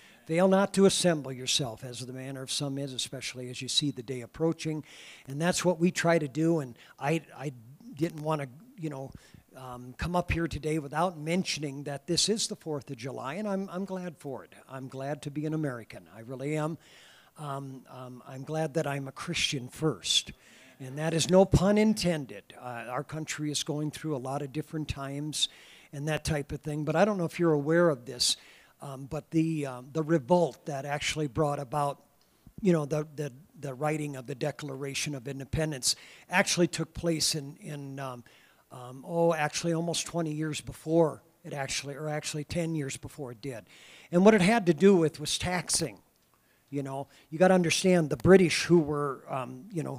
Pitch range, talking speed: 135-165 Hz, 200 wpm